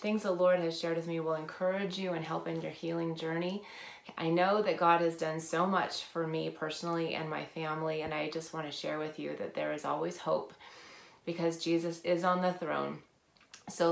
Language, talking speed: English, 215 wpm